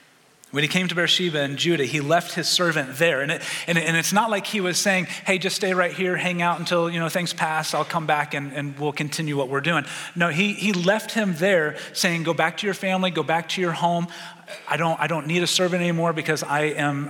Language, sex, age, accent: English, male, 30-49, American